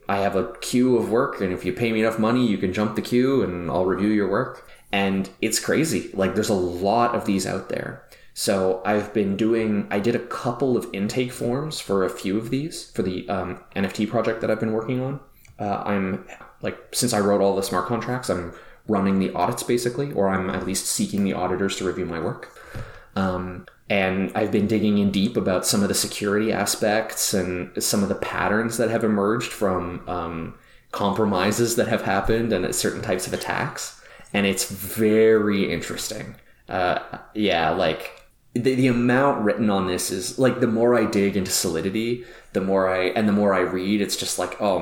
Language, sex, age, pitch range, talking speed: English, male, 20-39, 95-115 Hz, 200 wpm